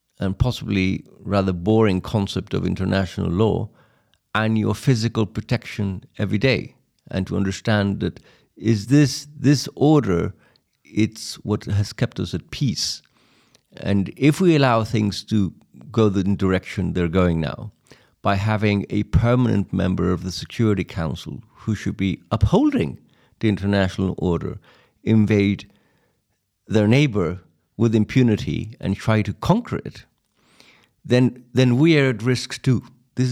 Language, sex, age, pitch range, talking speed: English, male, 50-69, 95-125 Hz, 135 wpm